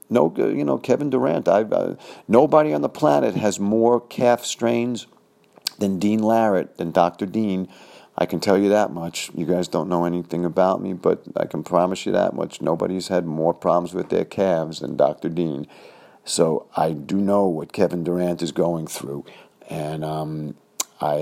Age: 50-69